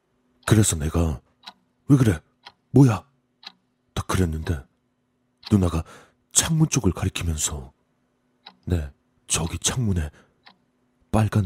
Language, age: Korean, 40-59